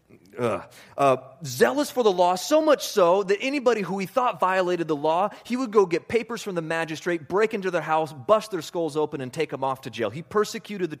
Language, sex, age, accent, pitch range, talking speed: English, male, 30-49, American, 120-185 Hz, 220 wpm